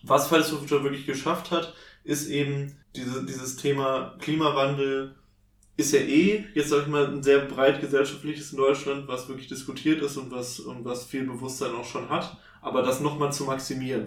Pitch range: 130-150 Hz